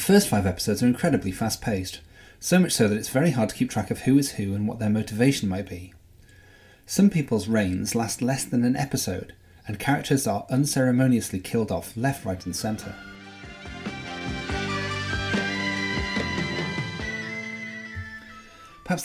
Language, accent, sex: English, British, male